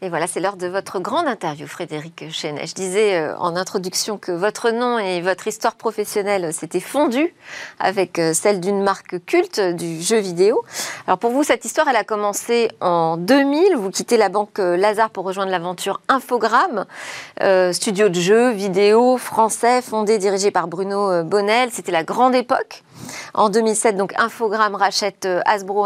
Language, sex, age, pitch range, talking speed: French, female, 40-59, 185-230 Hz, 160 wpm